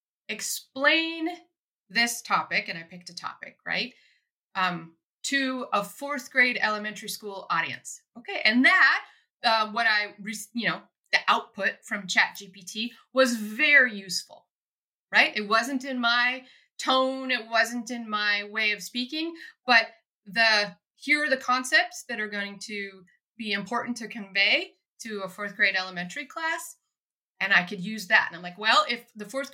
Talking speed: 160 wpm